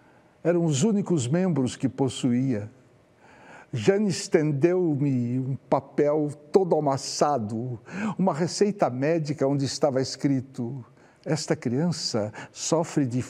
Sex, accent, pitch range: male, Brazilian, 110-155 Hz